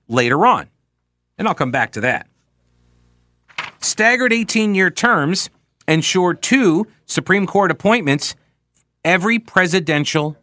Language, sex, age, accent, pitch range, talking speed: English, male, 50-69, American, 100-160 Hz, 105 wpm